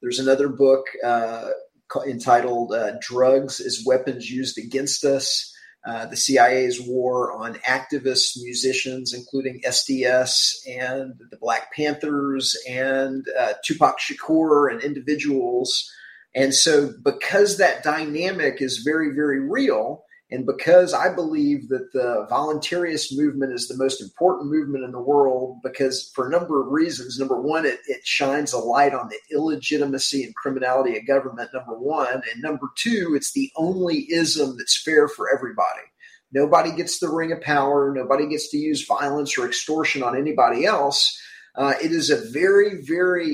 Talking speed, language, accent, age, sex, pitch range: 155 wpm, English, American, 30-49, male, 135-185 Hz